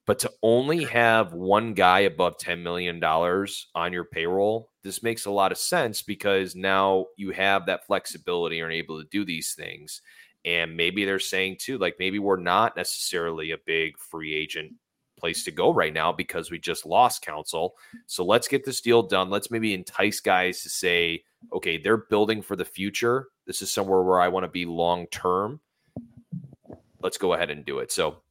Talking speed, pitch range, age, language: 195 wpm, 85-100 Hz, 30-49, English